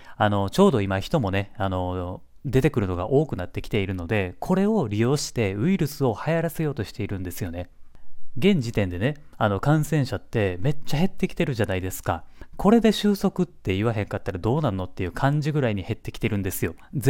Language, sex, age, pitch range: Japanese, male, 30-49, 100-155 Hz